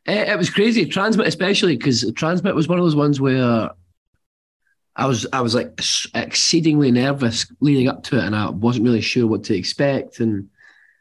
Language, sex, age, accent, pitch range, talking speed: English, male, 20-39, British, 115-150 Hz, 180 wpm